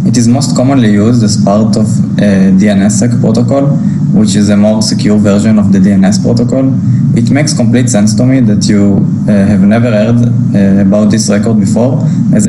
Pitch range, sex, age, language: 105-160 Hz, male, 20-39, English